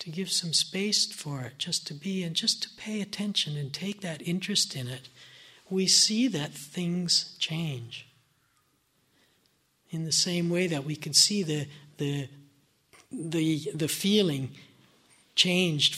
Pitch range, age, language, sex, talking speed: 145-180 Hz, 60-79, English, male, 145 wpm